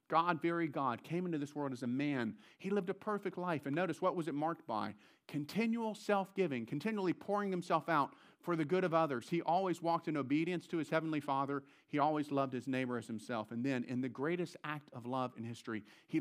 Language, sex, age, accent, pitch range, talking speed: English, male, 40-59, American, 130-175 Hz, 220 wpm